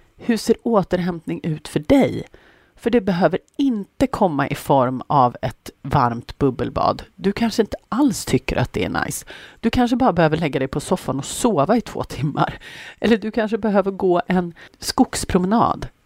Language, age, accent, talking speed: Swedish, 40-59, native, 170 wpm